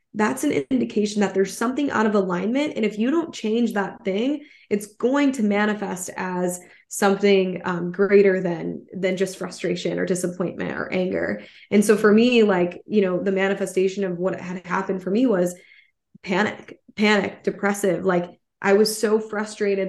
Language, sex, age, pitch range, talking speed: English, female, 10-29, 185-210 Hz, 170 wpm